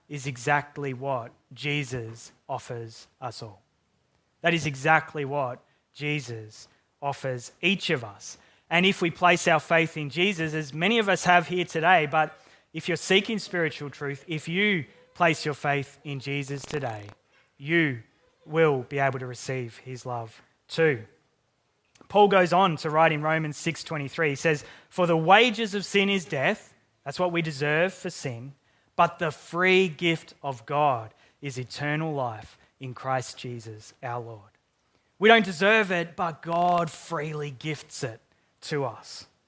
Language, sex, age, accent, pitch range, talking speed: English, male, 20-39, Australian, 130-170 Hz, 155 wpm